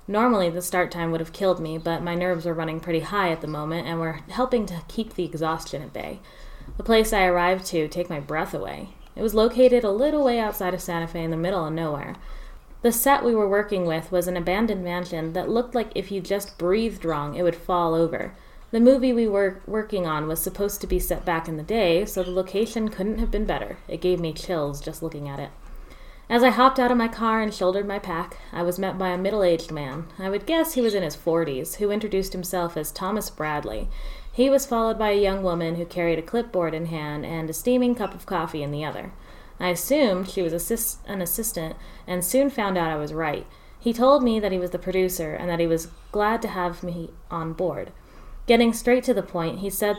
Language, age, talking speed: English, 20-39, 235 wpm